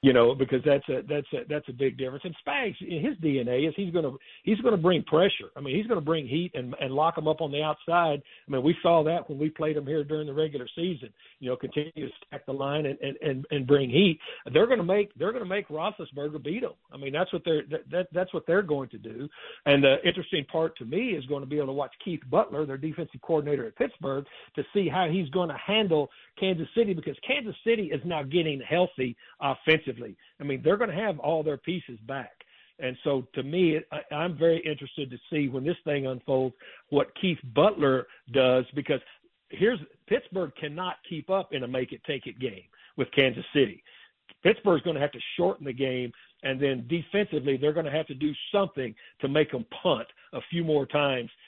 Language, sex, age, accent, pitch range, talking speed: English, male, 60-79, American, 135-170 Hz, 220 wpm